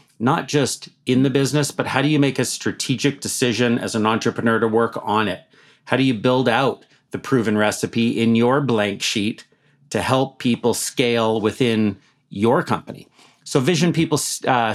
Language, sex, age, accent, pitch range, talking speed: English, male, 30-49, American, 110-140 Hz, 175 wpm